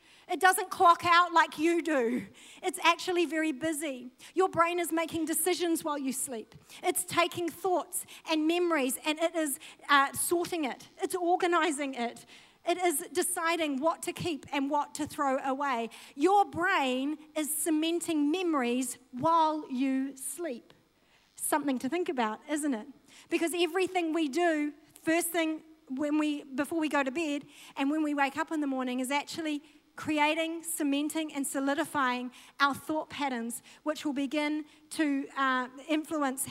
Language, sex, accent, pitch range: English, female, Australian, 260-325 Hz